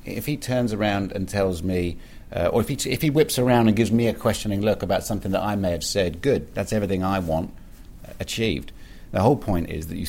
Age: 50-69